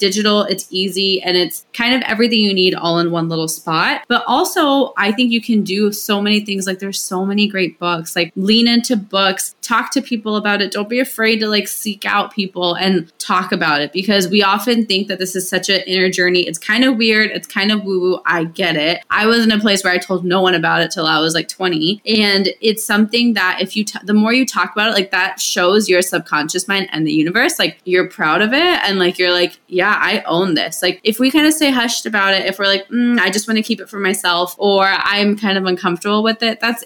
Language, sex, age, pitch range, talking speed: English, female, 20-39, 175-215 Hz, 250 wpm